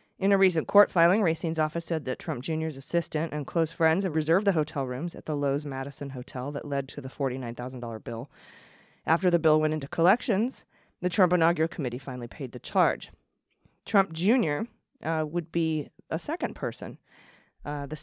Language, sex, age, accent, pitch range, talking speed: English, female, 20-39, American, 140-175 Hz, 185 wpm